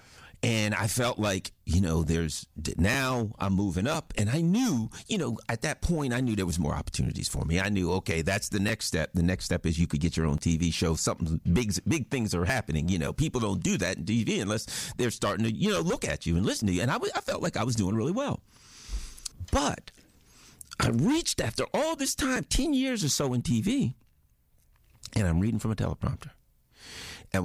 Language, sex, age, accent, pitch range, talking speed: English, male, 50-69, American, 85-110 Hz, 225 wpm